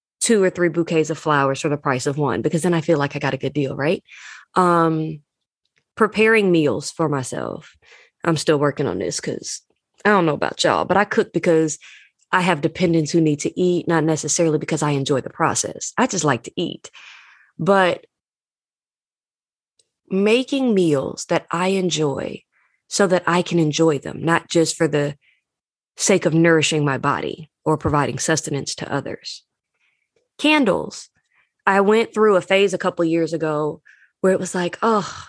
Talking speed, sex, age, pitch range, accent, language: 175 wpm, female, 20-39, 160-215 Hz, American, English